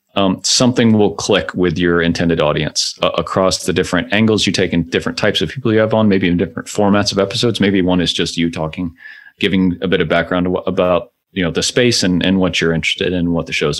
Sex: male